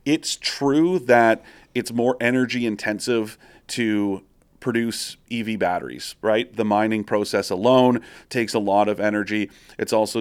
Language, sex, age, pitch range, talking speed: English, male, 40-59, 110-160 Hz, 135 wpm